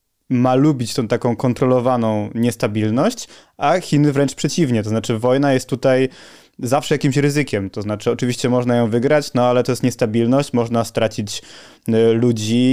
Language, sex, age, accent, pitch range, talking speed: Polish, male, 20-39, native, 115-135 Hz, 150 wpm